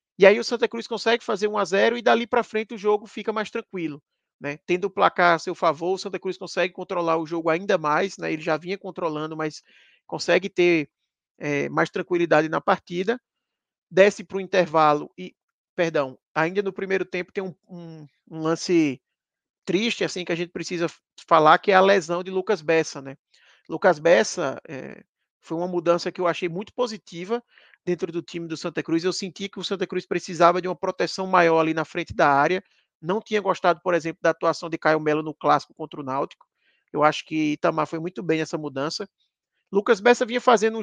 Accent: Brazilian